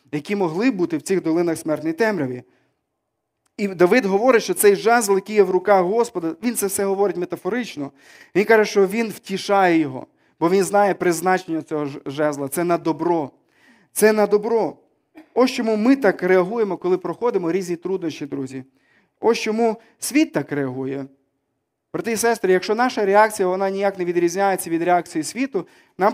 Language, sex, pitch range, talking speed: Ukrainian, male, 175-220 Hz, 165 wpm